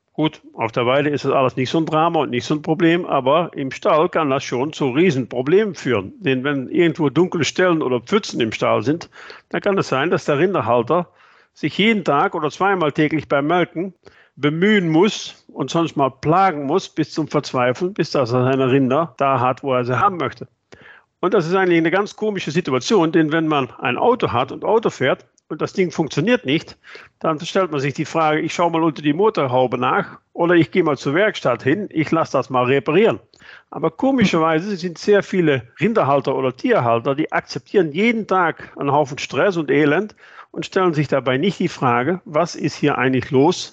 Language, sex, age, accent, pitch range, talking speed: German, male, 50-69, German, 135-175 Hz, 205 wpm